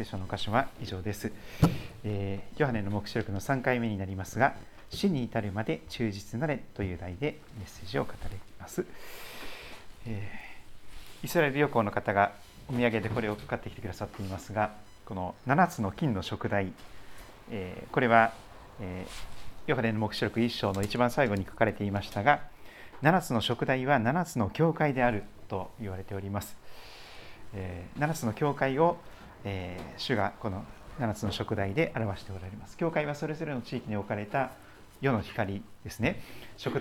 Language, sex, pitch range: Japanese, male, 100-125 Hz